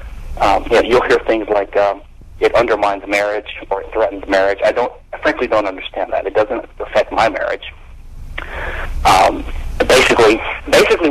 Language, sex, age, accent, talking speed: English, male, 40-59, American, 155 wpm